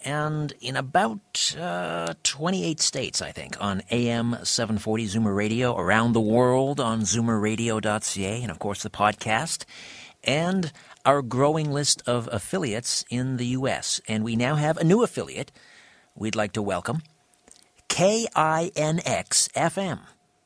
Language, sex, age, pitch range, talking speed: English, male, 50-69, 100-140 Hz, 125 wpm